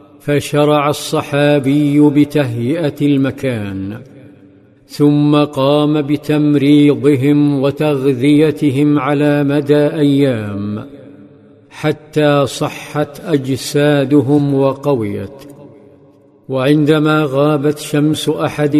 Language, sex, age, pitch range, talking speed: Arabic, male, 50-69, 140-150 Hz, 60 wpm